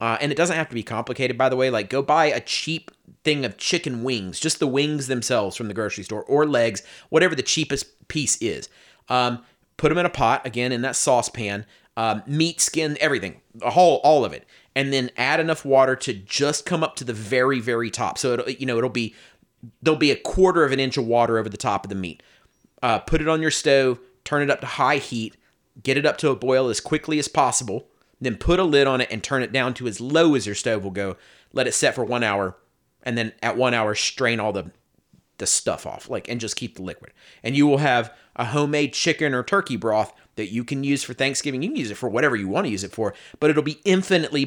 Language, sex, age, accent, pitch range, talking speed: English, male, 30-49, American, 110-145 Hz, 250 wpm